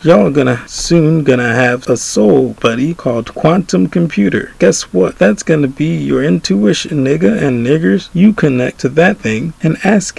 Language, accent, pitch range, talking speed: English, American, 125-155 Hz, 165 wpm